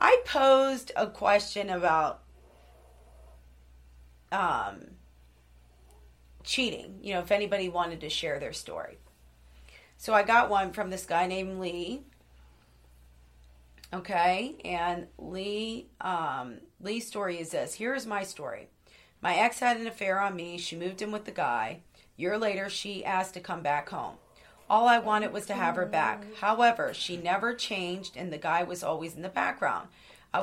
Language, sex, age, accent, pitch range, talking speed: English, female, 40-59, American, 160-205 Hz, 160 wpm